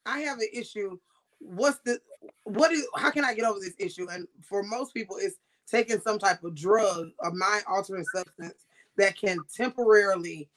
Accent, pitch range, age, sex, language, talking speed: American, 185-270 Hz, 20-39, female, English, 180 wpm